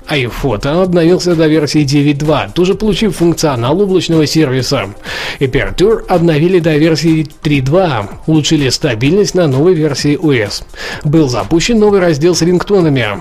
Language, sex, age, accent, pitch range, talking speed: Russian, male, 20-39, native, 135-170 Hz, 125 wpm